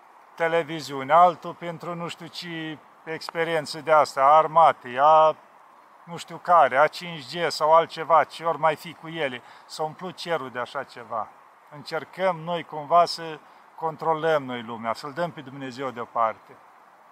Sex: male